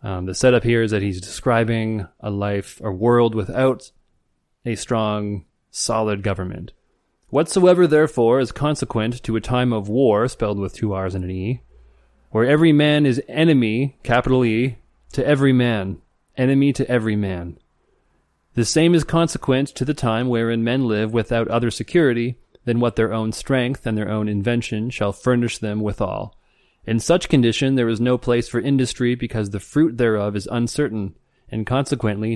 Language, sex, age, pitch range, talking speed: English, male, 30-49, 110-130 Hz, 165 wpm